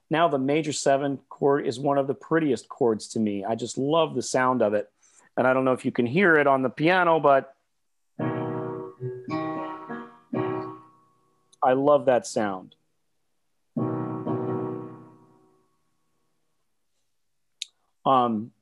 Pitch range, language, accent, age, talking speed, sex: 110-150 Hz, English, American, 40-59, 120 wpm, male